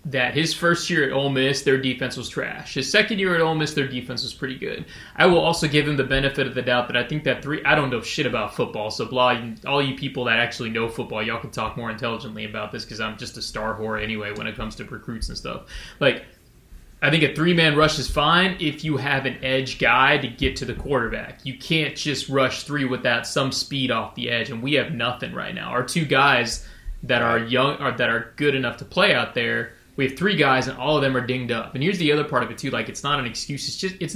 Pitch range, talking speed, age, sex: 120-145 Hz, 265 wpm, 20-39, male